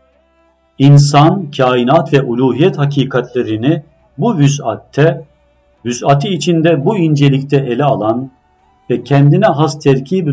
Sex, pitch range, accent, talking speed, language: male, 120-155 Hz, native, 100 wpm, Turkish